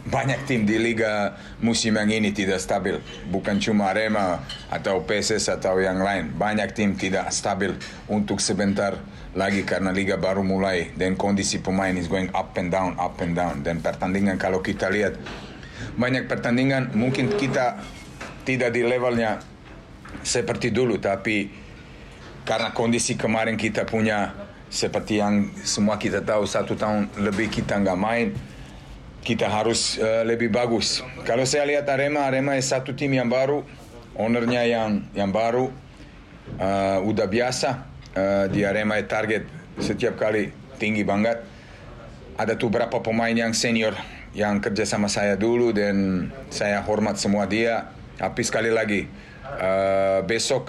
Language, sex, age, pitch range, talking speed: Indonesian, male, 40-59, 95-115 Hz, 145 wpm